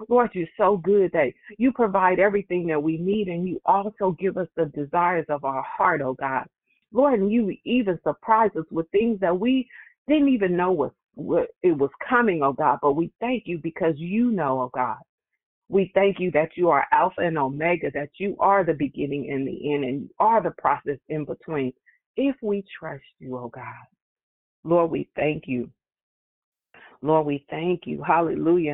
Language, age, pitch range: English, 40-59, 145-195 Hz